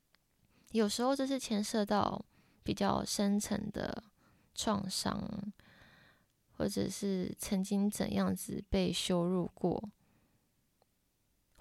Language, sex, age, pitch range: Chinese, female, 20-39, 180-215 Hz